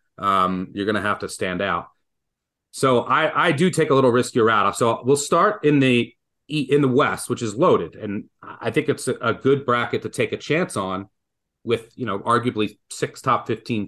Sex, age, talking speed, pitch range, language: male, 30-49, 205 wpm, 105-140 Hz, English